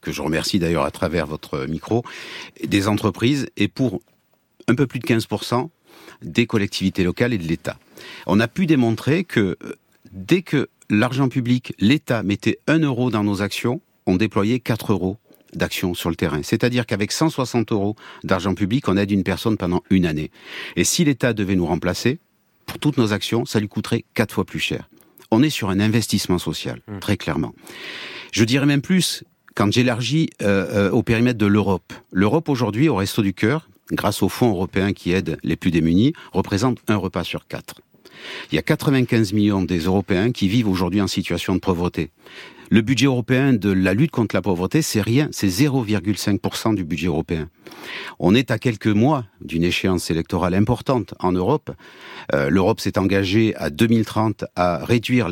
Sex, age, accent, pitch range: male, 60-79, French, 95-125 Hz